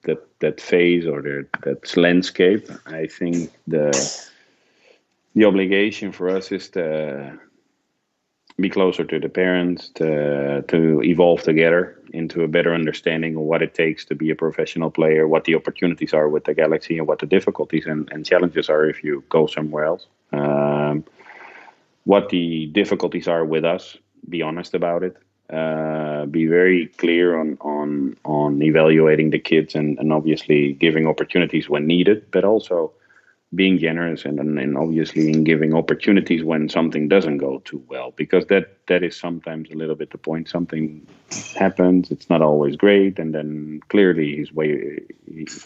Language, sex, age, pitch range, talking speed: English, male, 30-49, 75-90 Hz, 165 wpm